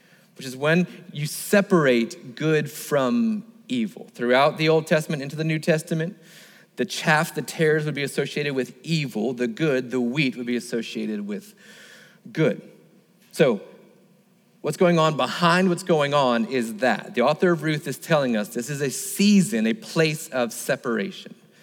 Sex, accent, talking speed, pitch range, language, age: male, American, 165 wpm, 140-190 Hz, English, 30-49